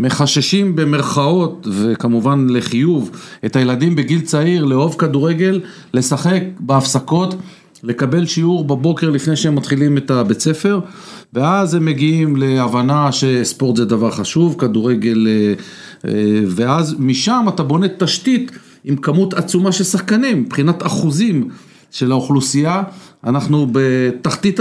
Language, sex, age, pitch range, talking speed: English, male, 40-59, 130-185 Hz, 110 wpm